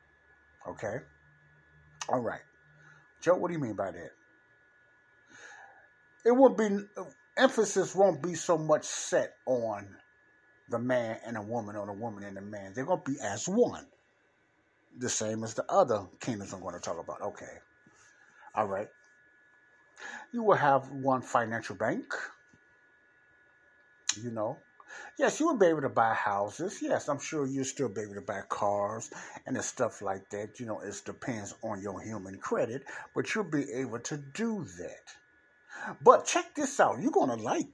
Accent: American